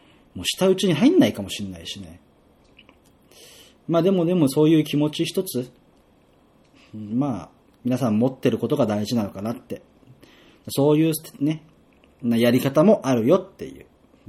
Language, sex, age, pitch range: Japanese, male, 30-49, 110-155 Hz